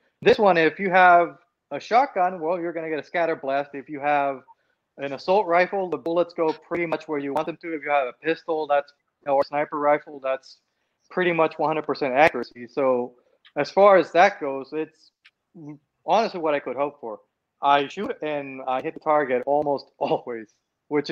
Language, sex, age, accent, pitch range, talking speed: English, male, 30-49, American, 145-185 Hz, 195 wpm